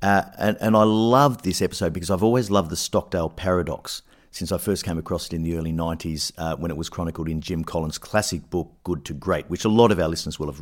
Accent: Australian